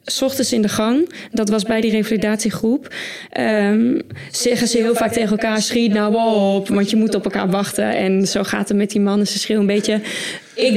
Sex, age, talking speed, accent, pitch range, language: female, 20-39, 205 wpm, Dutch, 210-255 Hz, Dutch